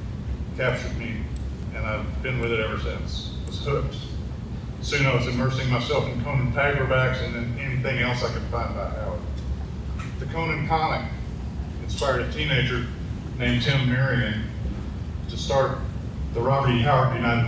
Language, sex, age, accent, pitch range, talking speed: English, male, 40-59, American, 95-130 Hz, 150 wpm